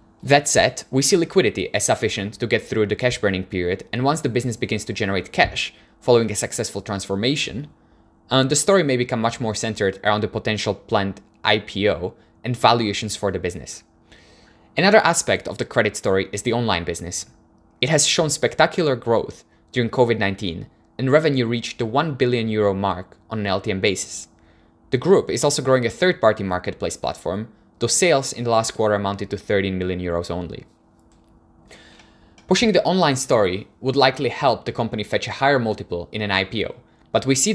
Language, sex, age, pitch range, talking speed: English, male, 20-39, 95-125 Hz, 175 wpm